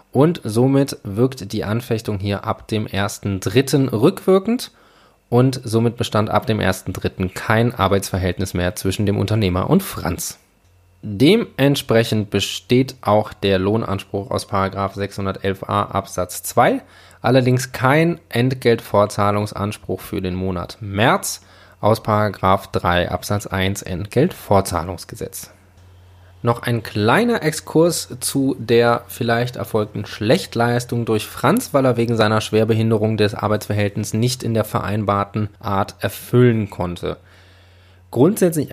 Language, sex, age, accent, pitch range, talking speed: German, male, 20-39, German, 95-120 Hz, 110 wpm